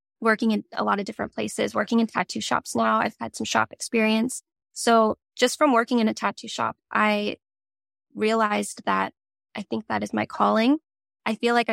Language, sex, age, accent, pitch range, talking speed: English, female, 10-29, American, 205-245 Hz, 190 wpm